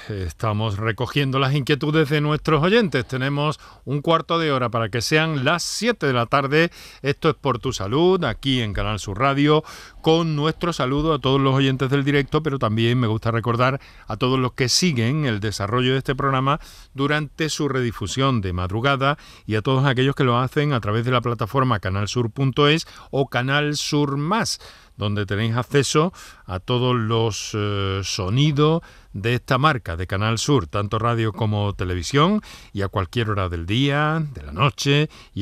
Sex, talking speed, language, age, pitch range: male, 175 wpm, Spanish, 40-59, 100-140 Hz